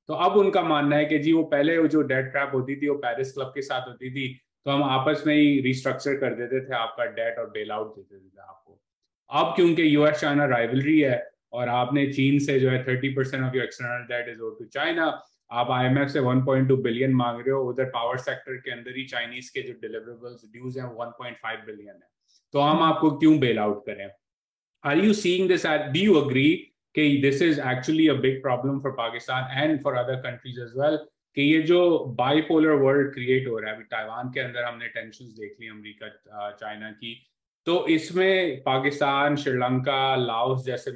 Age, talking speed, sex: 20-39, 155 wpm, male